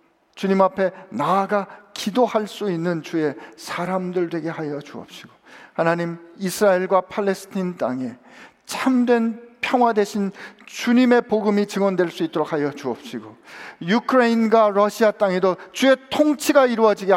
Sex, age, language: male, 50-69, Korean